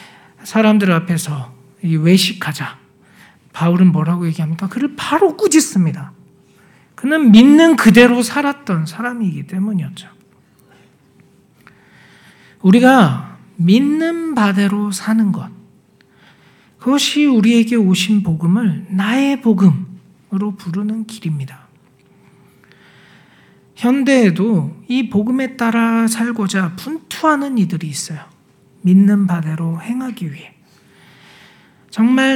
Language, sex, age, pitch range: Korean, male, 40-59, 175-235 Hz